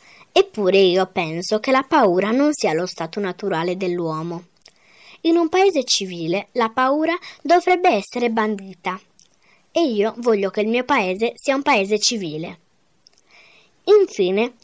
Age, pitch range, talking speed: 20-39, 185-265 Hz, 135 wpm